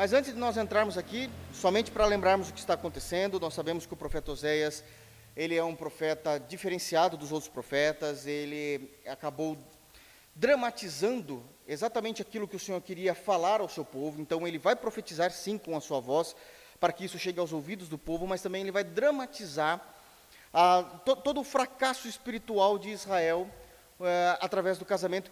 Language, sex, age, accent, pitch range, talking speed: Portuguese, male, 30-49, Brazilian, 165-230 Hz, 170 wpm